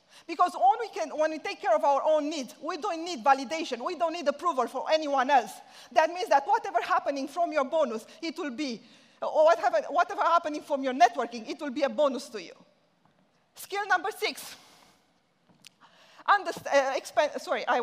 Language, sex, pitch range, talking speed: English, female, 270-345 Hz, 185 wpm